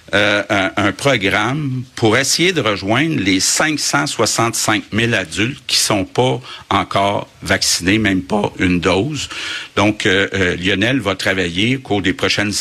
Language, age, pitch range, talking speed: French, 60-79, 95-120 Hz, 145 wpm